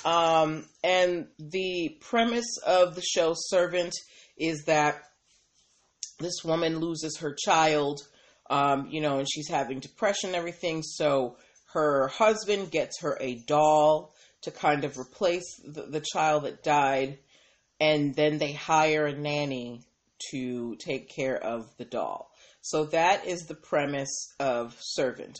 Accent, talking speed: American, 140 wpm